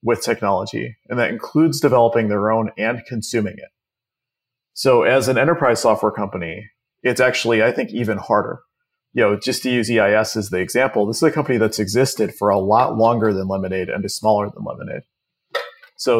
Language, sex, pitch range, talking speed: English, male, 105-135 Hz, 185 wpm